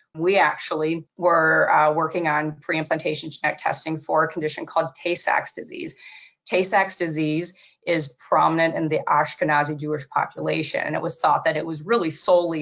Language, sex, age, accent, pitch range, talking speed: English, female, 30-49, American, 155-175 Hz, 155 wpm